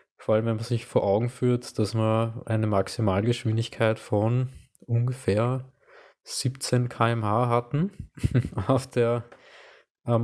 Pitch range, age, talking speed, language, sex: 105-125 Hz, 20-39, 115 wpm, German, male